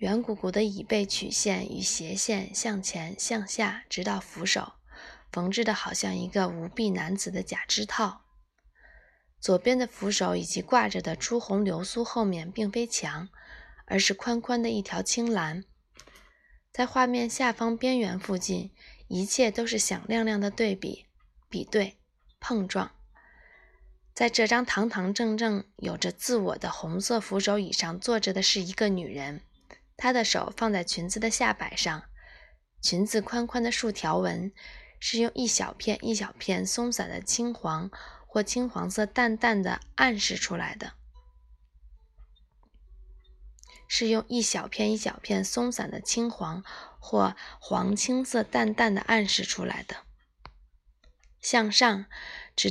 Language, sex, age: Chinese, female, 20-39